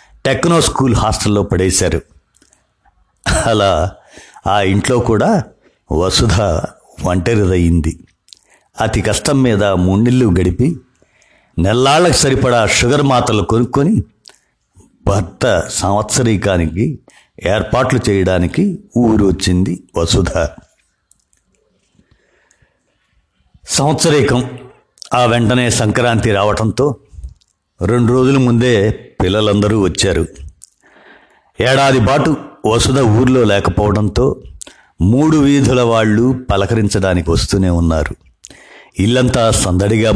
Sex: male